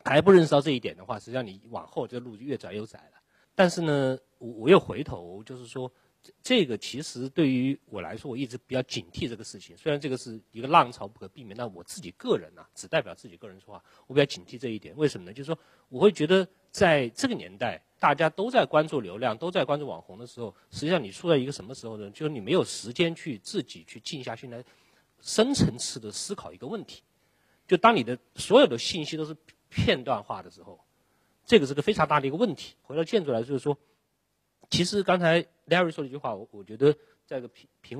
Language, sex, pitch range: Chinese, male, 110-155 Hz